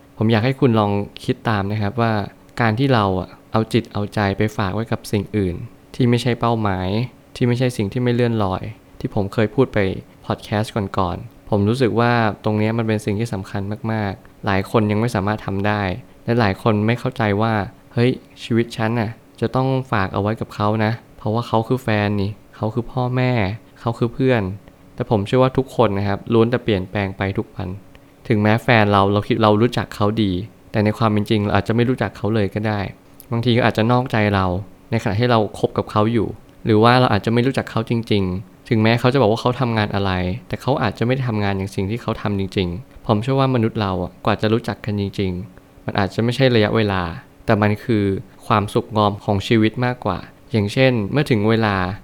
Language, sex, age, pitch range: Thai, male, 20-39, 100-120 Hz